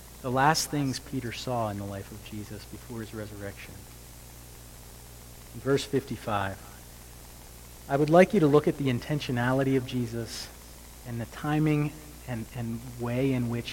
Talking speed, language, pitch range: 155 wpm, English, 105-145 Hz